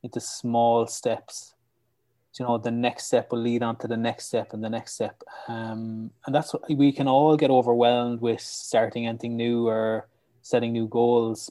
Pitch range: 115-125 Hz